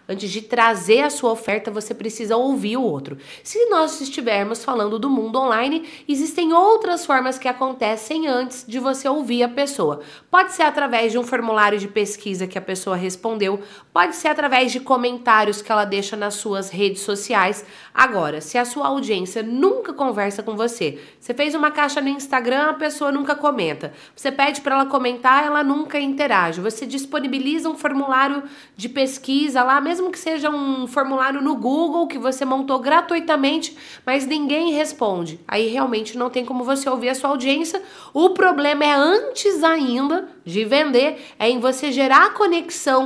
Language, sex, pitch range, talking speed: Portuguese, female, 225-290 Hz, 175 wpm